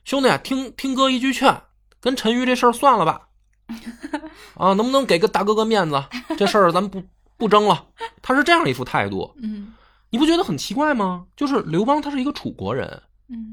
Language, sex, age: Chinese, male, 20-39